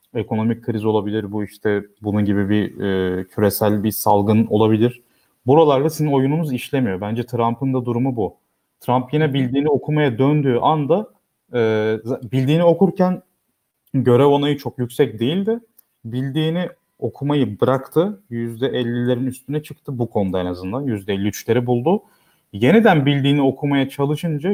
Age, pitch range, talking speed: 30-49, 105-140 Hz, 125 wpm